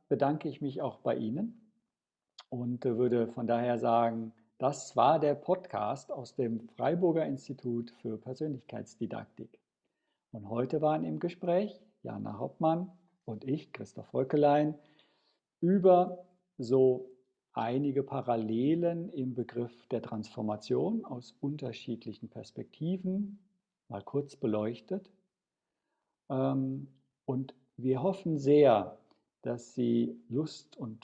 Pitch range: 120-150 Hz